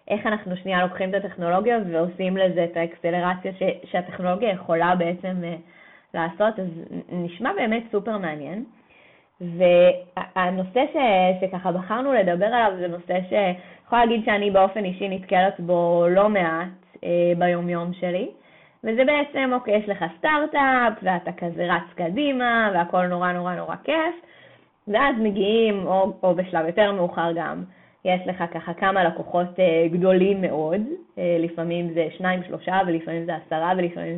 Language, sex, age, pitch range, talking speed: English, female, 20-39, 175-215 Hz, 140 wpm